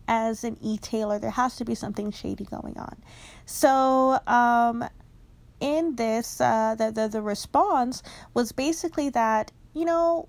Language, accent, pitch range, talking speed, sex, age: English, American, 220-275 Hz, 145 wpm, female, 20-39